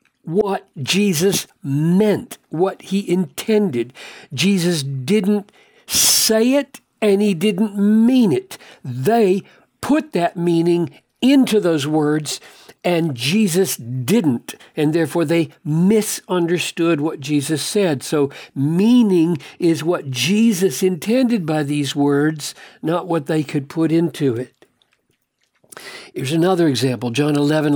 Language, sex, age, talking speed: English, male, 60-79, 115 wpm